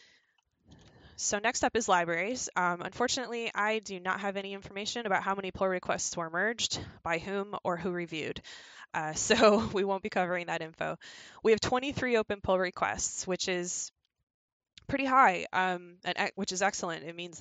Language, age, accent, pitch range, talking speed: English, 20-39, American, 165-195 Hz, 175 wpm